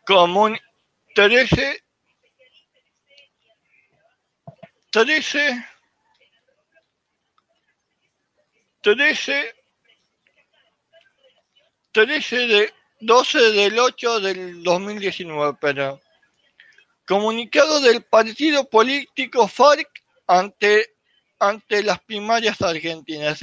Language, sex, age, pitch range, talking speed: English, male, 60-79, 180-245 Hz, 55 wpm